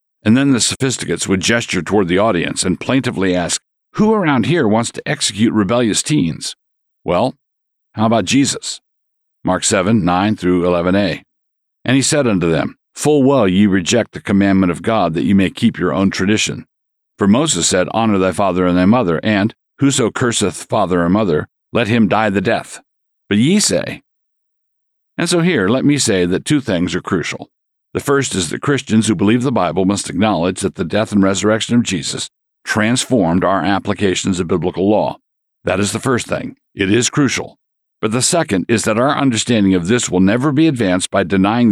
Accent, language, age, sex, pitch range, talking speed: American, English, 50-69, male, 95-120 Hz, 185 wpm